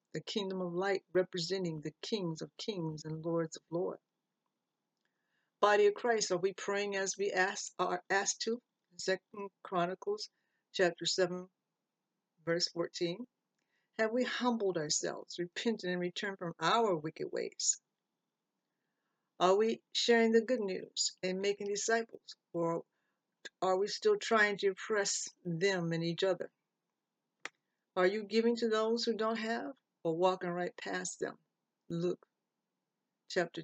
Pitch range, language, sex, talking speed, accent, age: 175-210 Hz, English, female, 135 wpm, American, 60-79